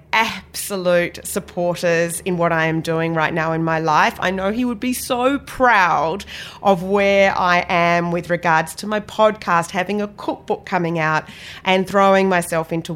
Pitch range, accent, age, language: 165-200 Hz, Australian, 30-49, English